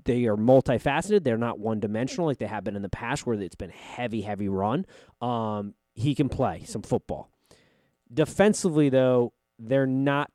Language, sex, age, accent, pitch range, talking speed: English, male, 20-39, American, 110-140 Hz, 170 wpm